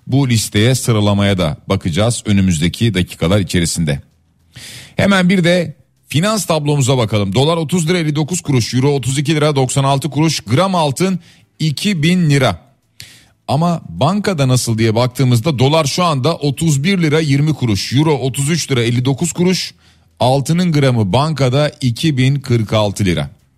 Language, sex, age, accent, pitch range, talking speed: Turkish, male, 40-59, native, 110-155 Hz, 125 wpm